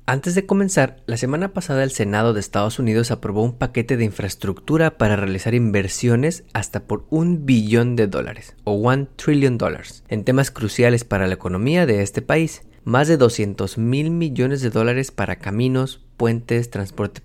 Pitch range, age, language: 105-135 Hz, 30-49, Spanish